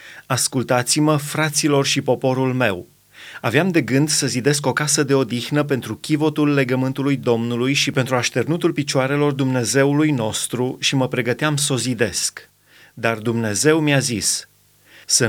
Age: 30-49